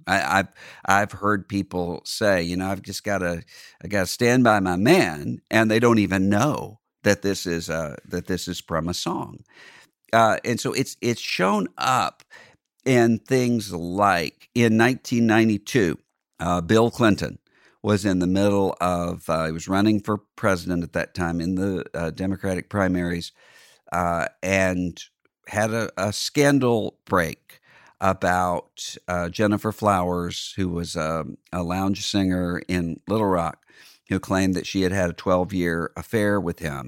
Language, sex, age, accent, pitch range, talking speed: English, male, 50-69, American, 85-105 Hz, 160 wpm